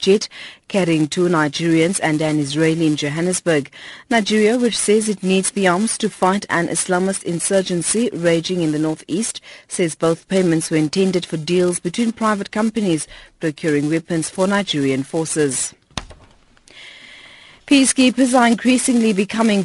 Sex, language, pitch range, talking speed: female, English, 160-205 Hz, 135 wpm